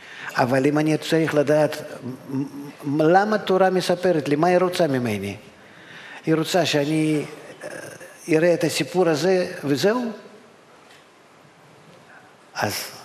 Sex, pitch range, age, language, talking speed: male, 130-160 Hz, 50-69, Hebrew, 100 wpm